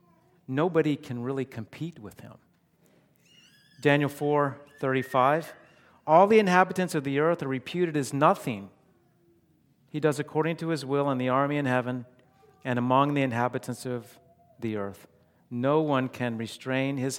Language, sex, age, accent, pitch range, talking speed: English, male, 50-69, American, 115-150 Hz, 145 wpm